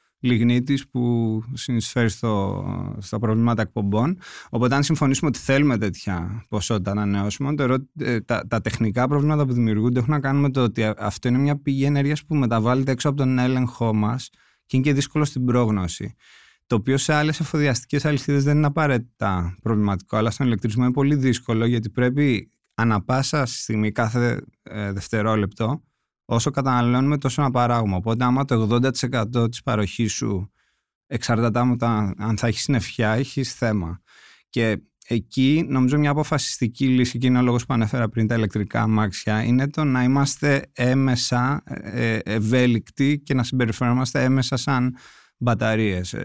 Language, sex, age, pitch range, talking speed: Greek, male, 20-39, 110-135 Hz, 150 wpm